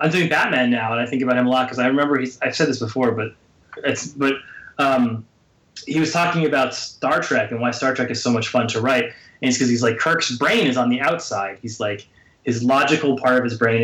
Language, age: English, 20-39